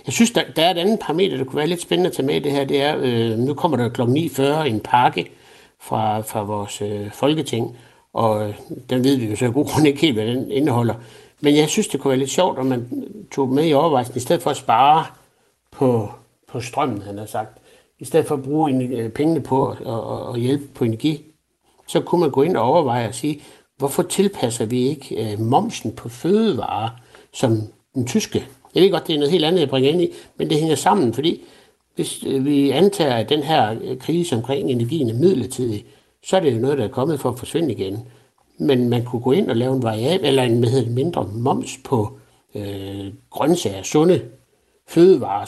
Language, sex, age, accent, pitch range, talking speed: Danish, male, 60-79, native, 120-155 Hz, 210 wpm